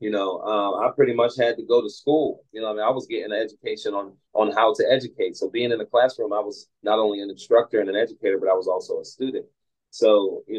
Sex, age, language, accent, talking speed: male, 30-49, English, American, 265 wpm